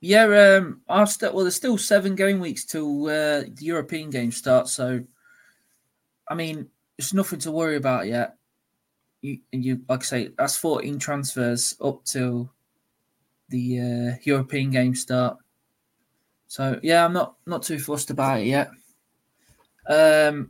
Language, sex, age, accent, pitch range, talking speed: English, male, 20-39, British, 130-150 Hz, 150 wpm